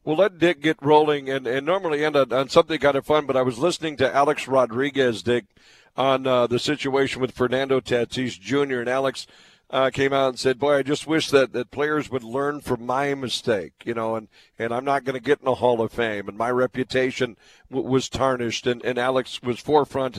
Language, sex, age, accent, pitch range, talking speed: English, male, 50-69, American, 130-150 Hz, 225 wpm